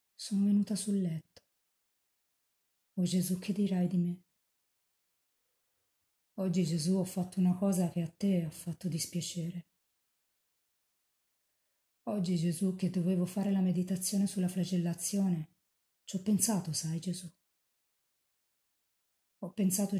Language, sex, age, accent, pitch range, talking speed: Italian, female, 30-49, native, 170-190 Hz, 115 wpm